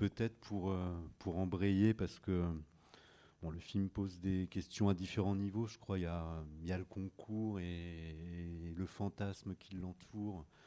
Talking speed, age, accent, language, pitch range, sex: 165 wpm, 40-59, French, English, 85-100 Hz, male